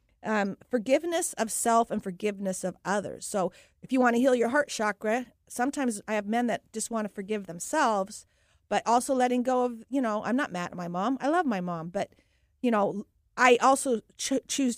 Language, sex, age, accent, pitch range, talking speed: English, female, 40-59, American, 195-245 Hz, 205 wpm